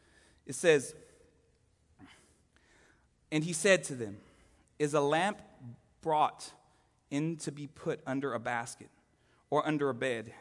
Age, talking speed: 30-49, 125 wpm